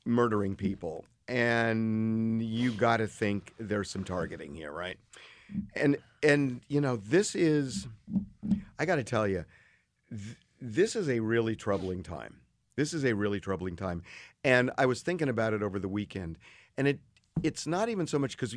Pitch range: 105-135 Hz